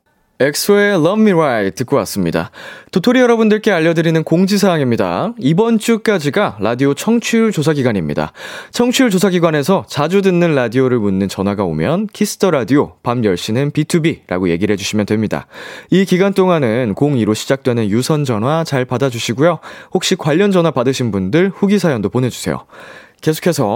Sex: male